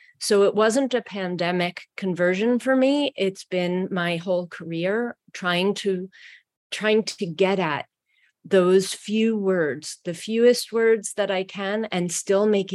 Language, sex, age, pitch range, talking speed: English, female, 30-49, 180-215 Hz, 145 wpm